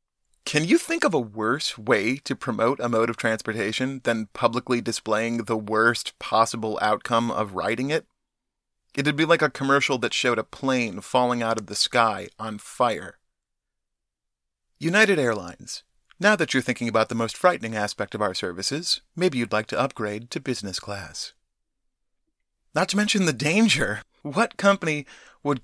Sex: male